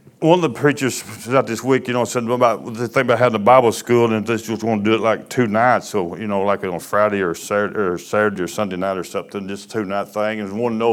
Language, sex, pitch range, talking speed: English, male, 105-135 Hz, 300 wpm